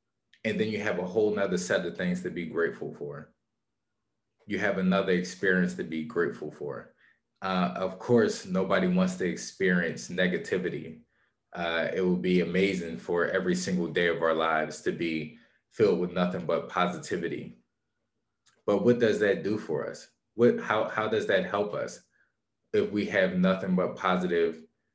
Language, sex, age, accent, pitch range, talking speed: English, male, 20-39, American, 85-110 Hz, 165 wpm